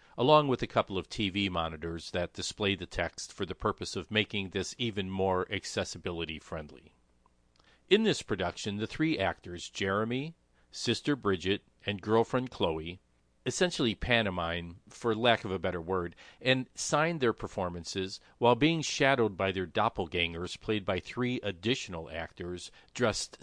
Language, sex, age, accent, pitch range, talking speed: English, male, 50-69, American, 85-120 Hz, 145 wpm